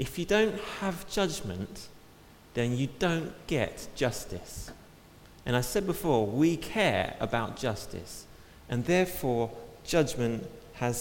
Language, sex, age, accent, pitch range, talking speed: English, male, 30-49, British, 120-170 Hz, 120 wpm